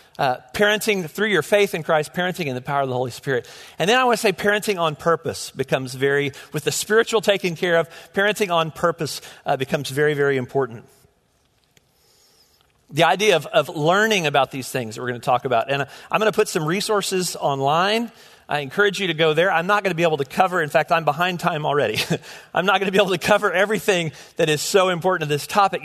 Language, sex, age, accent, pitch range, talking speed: English, male, 40-59, American, 155-210 Hz, 225 wpm